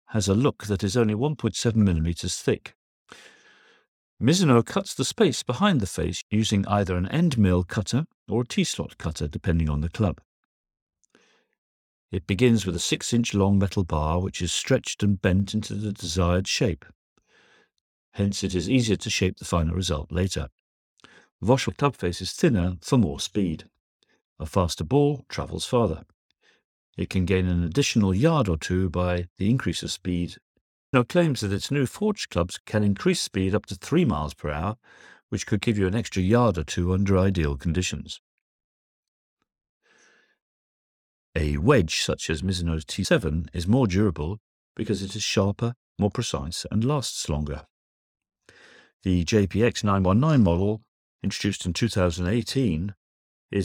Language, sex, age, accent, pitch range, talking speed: English, male, 50-69, British, 85-110 Hz, 150 wpm